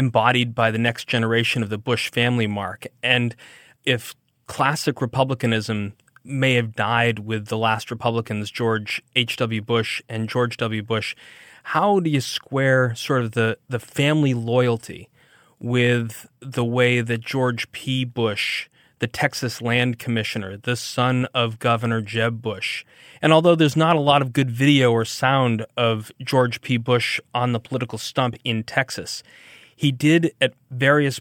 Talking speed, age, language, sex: 155 wpm, 30-49, English, male